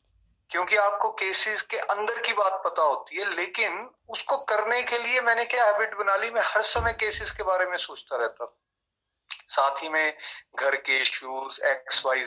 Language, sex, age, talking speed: Hindi, male, 30-49, 180 wpm